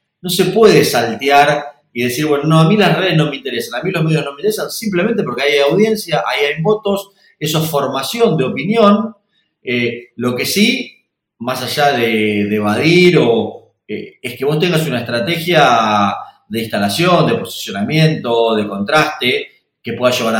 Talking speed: 175 wpm